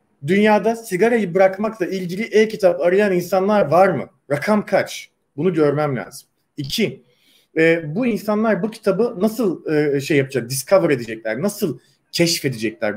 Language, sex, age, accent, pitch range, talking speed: Turkish, male, 40-59, native, 150-200 Hz, 120 wpm